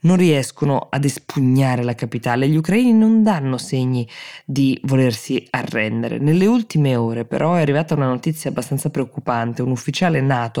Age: 20-39